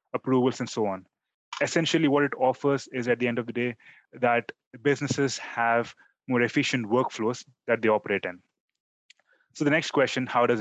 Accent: Indian